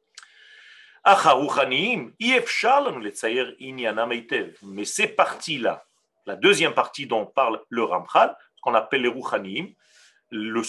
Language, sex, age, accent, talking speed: French, male, 40-59, French, 85 wpm